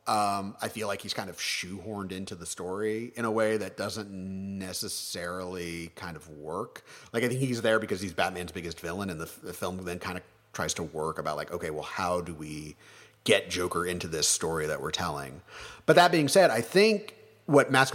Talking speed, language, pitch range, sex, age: 210 wpm, English, 90-125 Hz, male, 30-49